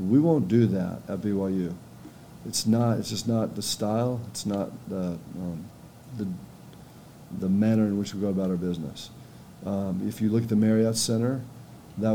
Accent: American